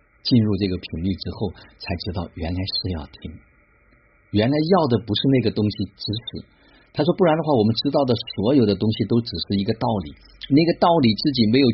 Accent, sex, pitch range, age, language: native, male, 80-105 Hz, 50-69, Chinese